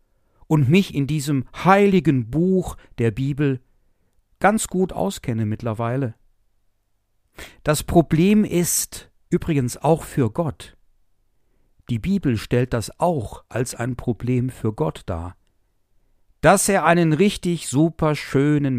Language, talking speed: German, 115 wpm